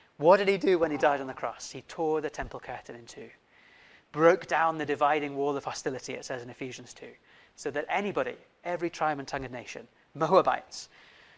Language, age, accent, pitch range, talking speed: English, 30-49, British, 135-175 Hz, 205 wpm